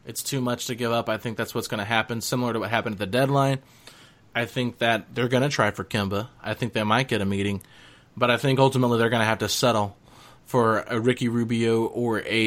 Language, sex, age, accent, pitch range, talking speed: English, male, 30-49, American, 110-130 Hz, 250 wpm